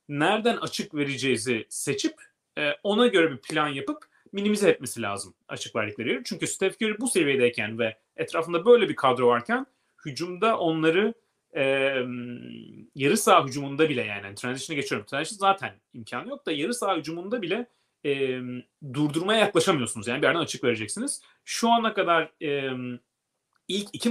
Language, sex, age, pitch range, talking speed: Turkish, male, 30-49, 130-200 Hz, 145 wpm